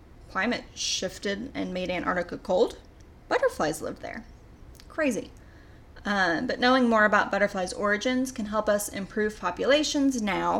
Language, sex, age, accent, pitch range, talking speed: English, female, 10-29, American, 210-270 Hz, 130 wpm